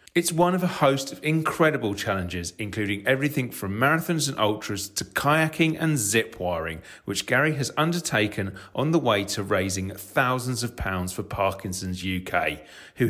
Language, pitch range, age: English, 100-150 Hz, 40-59